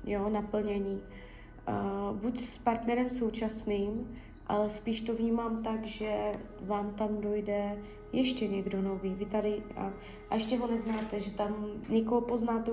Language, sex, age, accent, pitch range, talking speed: Czech, female, 20-39, native, 205-230 Hz, 135 wpm